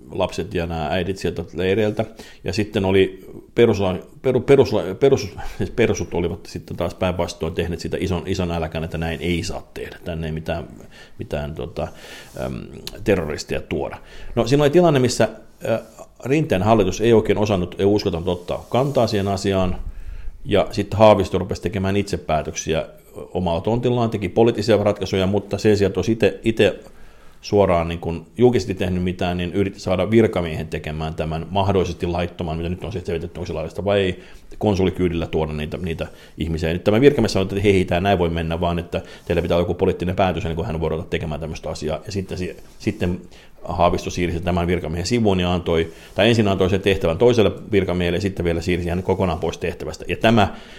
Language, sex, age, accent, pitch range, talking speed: Finnish, male, 50-69, native, 85-100 Hz, 180 wpm